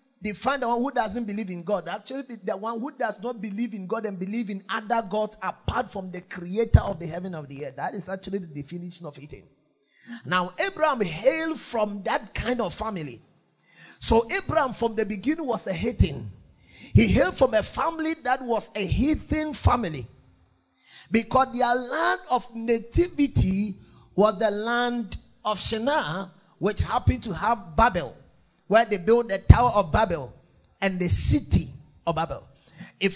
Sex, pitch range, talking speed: male, 180-255 Hz, 170 wpm